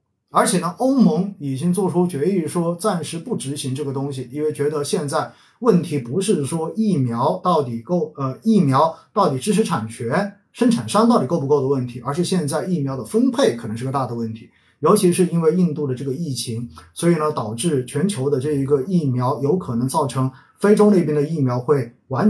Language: Chinese